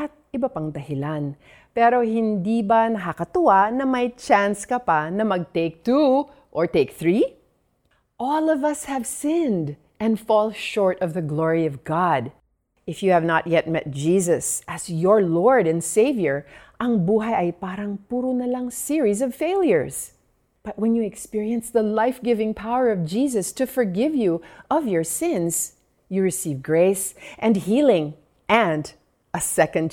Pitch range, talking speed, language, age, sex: 170-245 Hz, 145 wpm, Filipino, 40-59, female